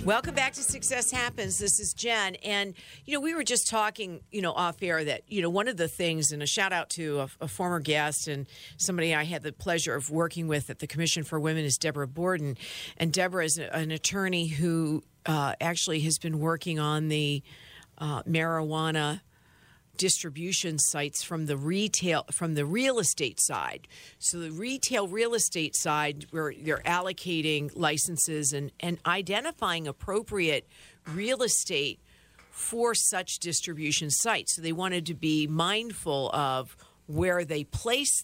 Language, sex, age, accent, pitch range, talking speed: English, female, 50-69, American, 150-180 Hz, 170 wpm